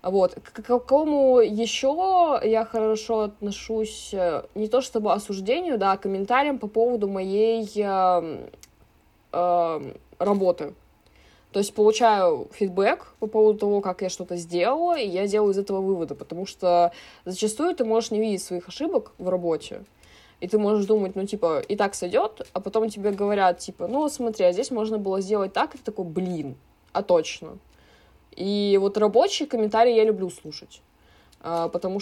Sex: female